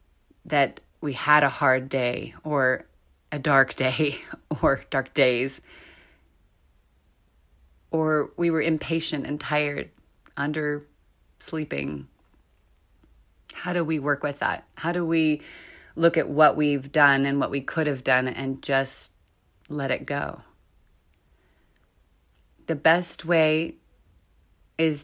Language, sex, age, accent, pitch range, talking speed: English, female, 30-49, American, 130-165 Hz, 120 wpm